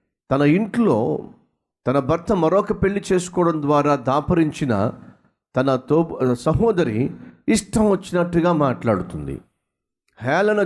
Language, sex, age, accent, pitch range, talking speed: Telugu, male, 50-69, native, 130-190 Hz, 85 wpm